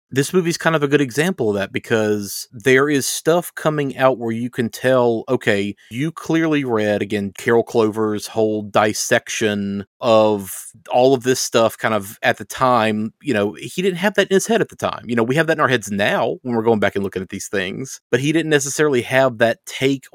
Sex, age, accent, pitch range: male, 30-49, American, 105-130 Hz